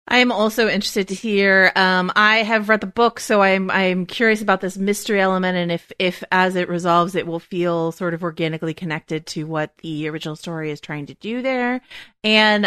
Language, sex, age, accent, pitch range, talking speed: English, female, 30-49, American, 155-205 Hz, 210 wpm